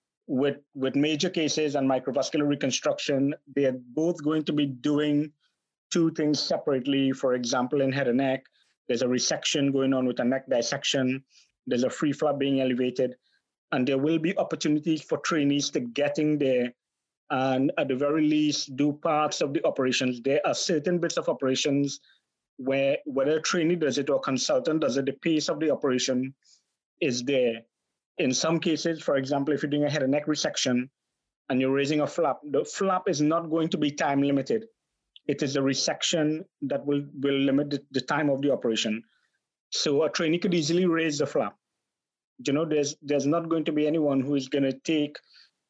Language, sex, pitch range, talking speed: English, male, 135-155 Hz, 190 wpm